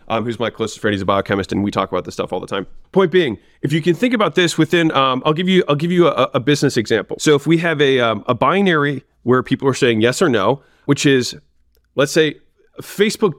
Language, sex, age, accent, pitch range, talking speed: English, male, 30-49, American, 135-175 Hz, 255 wpm